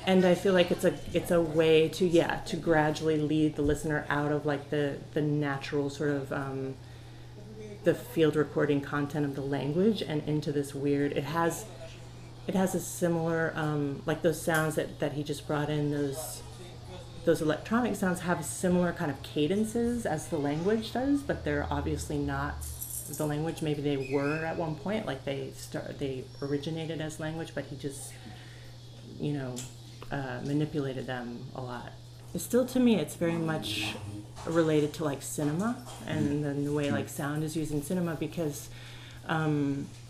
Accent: American